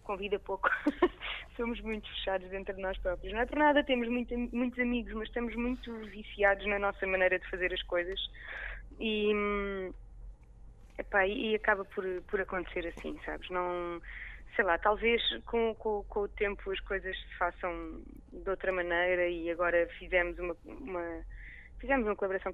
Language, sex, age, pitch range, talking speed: Portuguese, female, 20-39, 190-235 Hz, 160 wpm